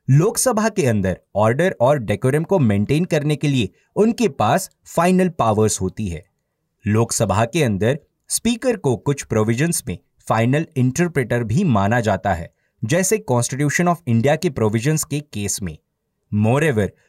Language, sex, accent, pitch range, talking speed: Hindi, male, native, 110-165 Hz, 145 wpm